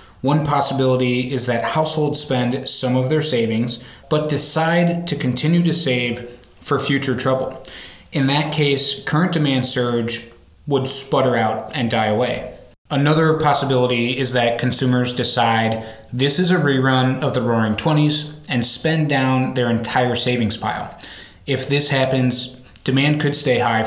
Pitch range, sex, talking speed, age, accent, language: 120-140 Hz, male, 150 wpm, 20-39, American, English